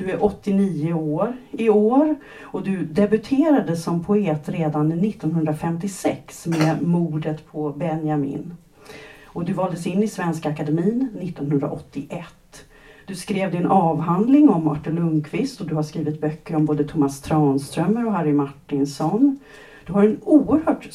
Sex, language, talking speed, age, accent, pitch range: female, Swedish, 135 wpm, 40-59, native, 155-215 Hz